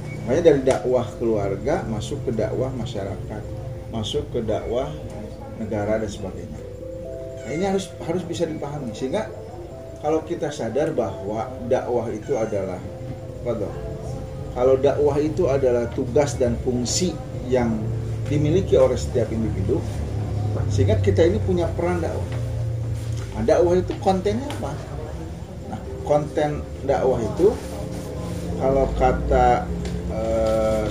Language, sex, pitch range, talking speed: Indonesian, male, 105-135 Hz, 115 wpm